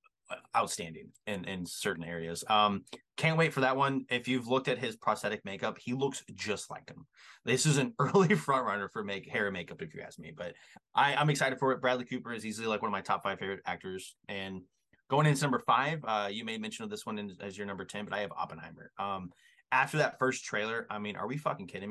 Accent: American